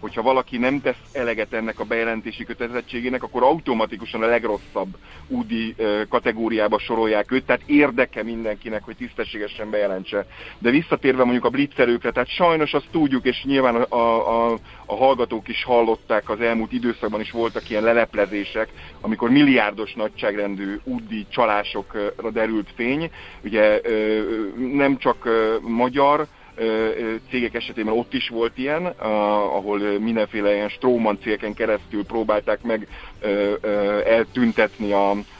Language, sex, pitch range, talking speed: Hungarian, male, 110-130 Hz, 120 wpm